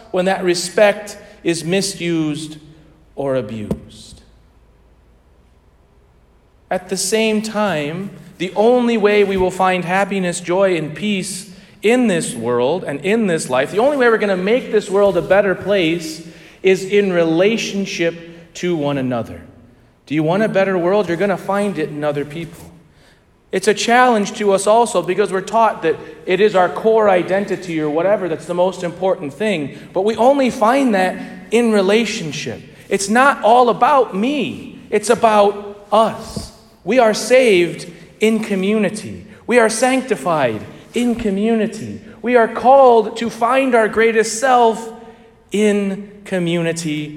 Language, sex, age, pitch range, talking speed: English, male, 40-59, 165-220 Hz, 150 wpm